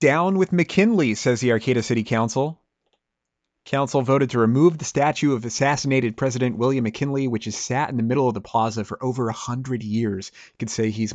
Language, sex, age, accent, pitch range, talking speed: English, male, 30-49, American, 110-140 Hz, 200 wpm